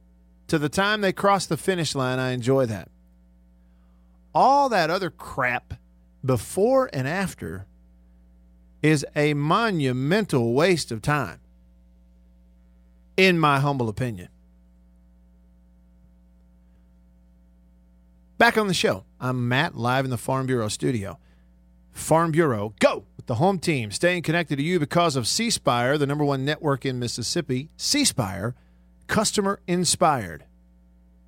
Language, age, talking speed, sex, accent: English, 40-59, 125 wpm, male, American